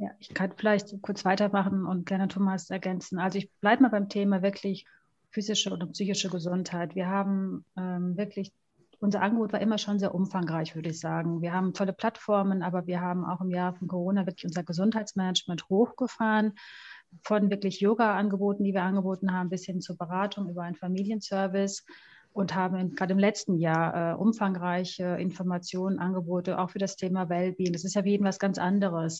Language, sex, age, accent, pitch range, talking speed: German, female, 30-49, German, 180-200 Hz, 180 wpm